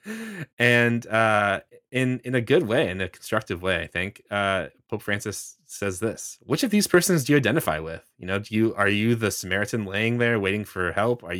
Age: 20-39